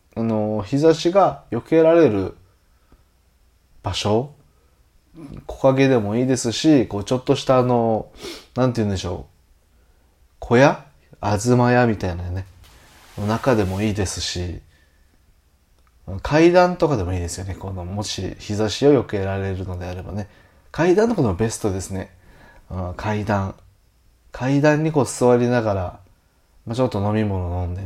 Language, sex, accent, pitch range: Japanese, male, native, 90-125 Hz